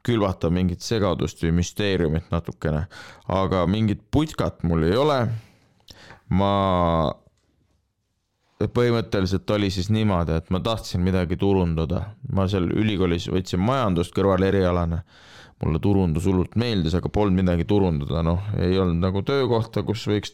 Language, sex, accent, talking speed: English, male, Finnish, 125 wpm